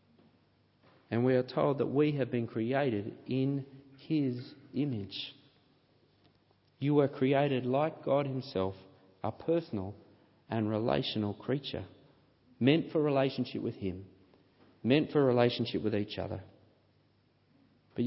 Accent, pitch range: Australian, 115-145 Hz